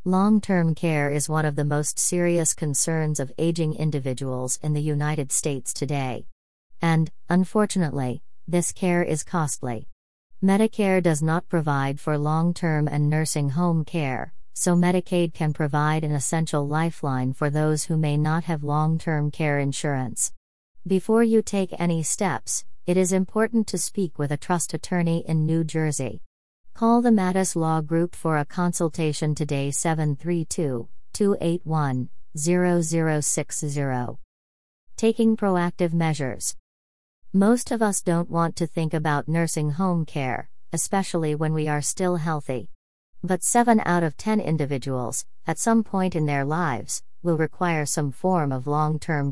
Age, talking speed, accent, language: 40-59, 140 wpm, American, English